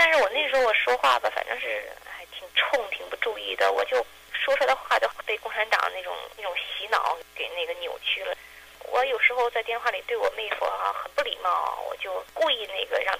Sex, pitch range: female, 205-335 Hz